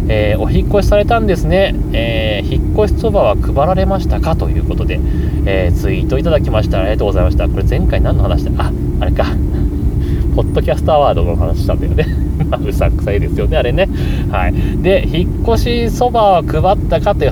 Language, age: Japanese, 30-49